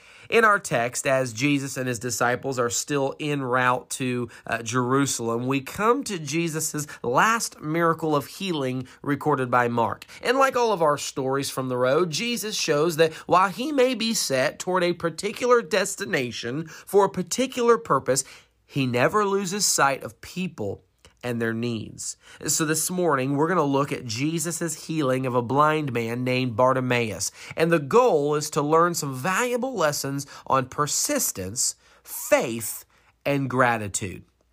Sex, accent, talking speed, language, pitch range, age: male, American, 155 wpm, English, 125-175 Hz, 30-49